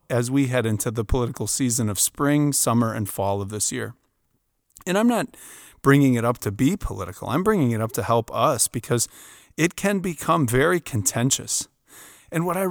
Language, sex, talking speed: English, male, 190 wpm